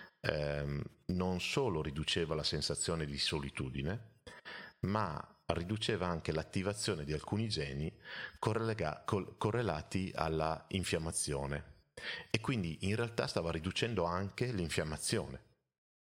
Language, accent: Italian, native